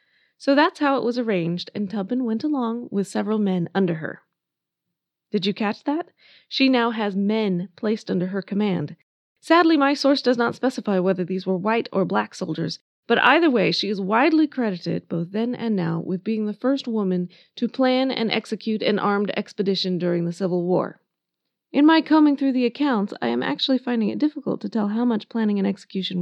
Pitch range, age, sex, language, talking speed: 185-250 Hz, 20-39, female, English, 195 wpm